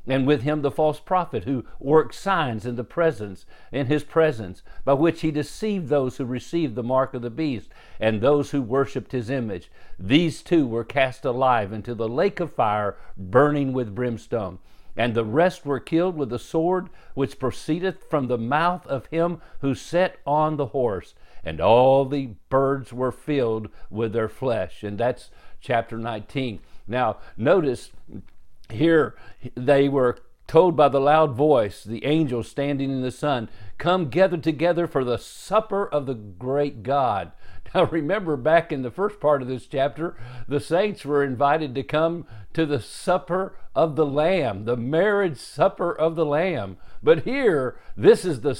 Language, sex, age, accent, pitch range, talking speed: English, male, 50-69, American, 120-160 Hz, 170 wpm